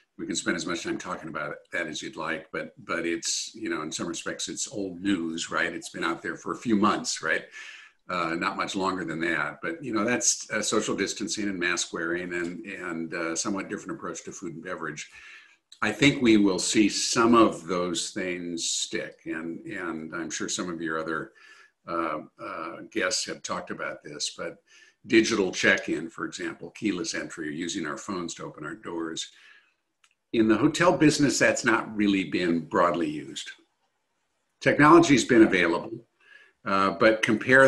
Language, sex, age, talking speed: English, male, 50-69, 185 wpm